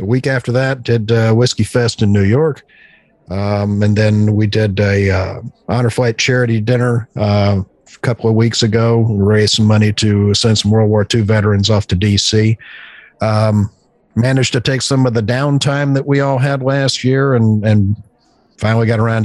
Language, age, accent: English, 50-69, American